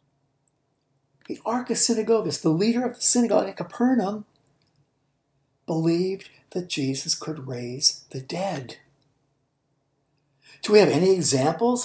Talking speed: 115 wpm